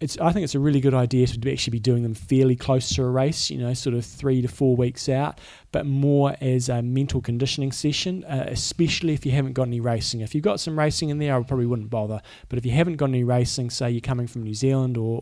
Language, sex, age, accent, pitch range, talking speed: English, male, 20-39, Australian, 120-140 Hz, 260 wpm